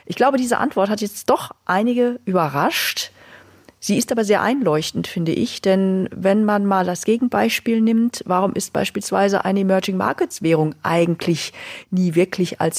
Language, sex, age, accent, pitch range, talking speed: German, female, 40-59, German, 180-230 Hz, 150 wpm